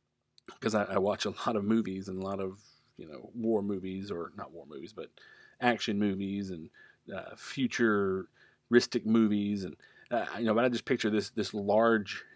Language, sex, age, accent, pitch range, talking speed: English, male, 40-59, American, 100-115 Hz, 185 wpm